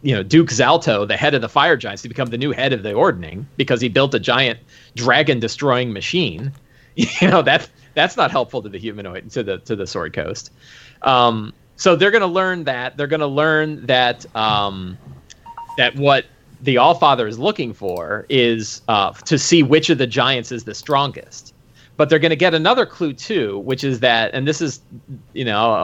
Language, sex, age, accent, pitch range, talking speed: English, male, 30-49, American, 120-145 Hz, 205 wpm